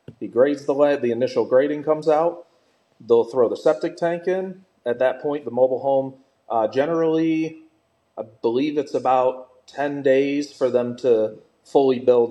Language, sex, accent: English, male, American